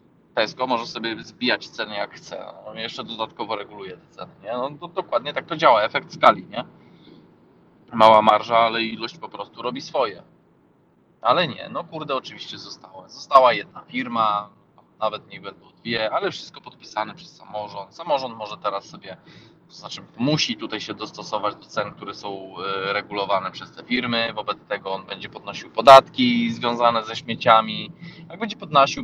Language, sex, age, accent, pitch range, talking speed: Polish, male, 20-39, native, 110-170 Hz, 165 wpm